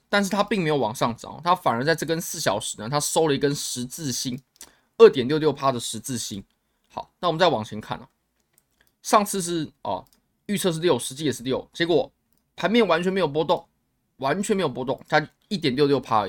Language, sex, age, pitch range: Chinese, male, 20-39, 130-185 Hz